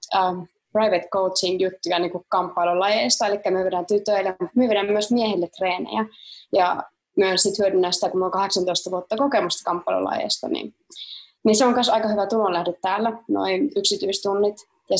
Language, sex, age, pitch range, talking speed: Finnish, female, 20-39, 185-220 Hz, 140 wpm